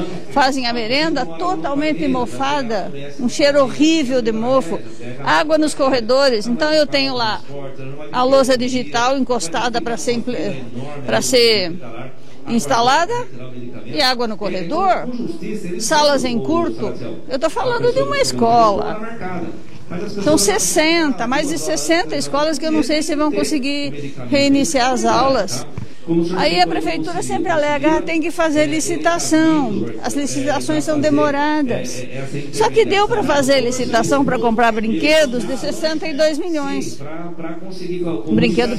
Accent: Brazilian